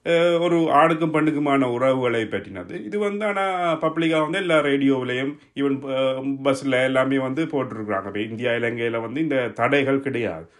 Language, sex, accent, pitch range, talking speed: Tamil, male, native, 125-160 Hz, 130 wpm